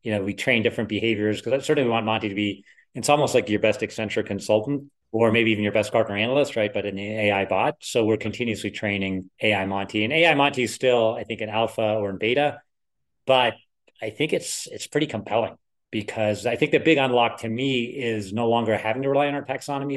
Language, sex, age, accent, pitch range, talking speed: English, male, 30-49, American, 105-125 Hz, 220 wpm